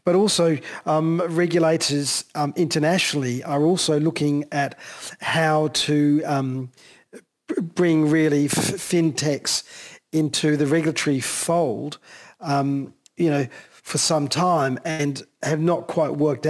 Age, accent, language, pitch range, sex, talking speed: 40-59, Australian, English, 145-165 Hz, male, 115 wpm